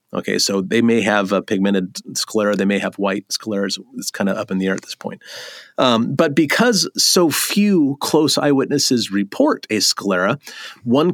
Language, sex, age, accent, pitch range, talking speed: English, male, 30-49, American, 100-145 Hz, 185 wpm